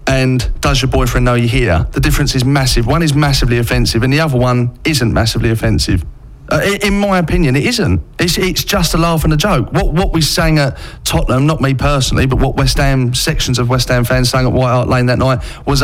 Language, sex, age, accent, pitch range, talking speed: English, male, 40-59, British, 125-160 Hz, 240 wpm